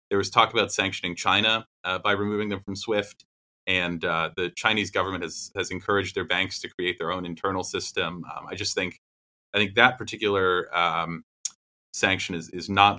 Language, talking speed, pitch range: English, 190 wpm, 90-105 Hz